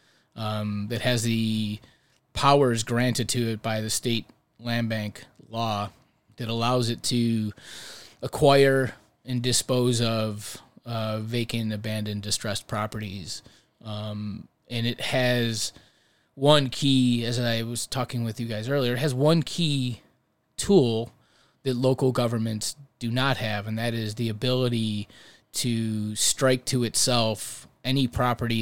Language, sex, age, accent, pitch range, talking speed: English, male, 20-39, American, 110-125 Hz, 130 wpm